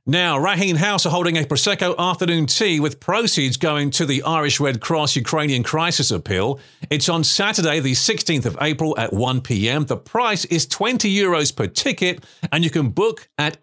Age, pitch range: 40-59, 140-180 Hz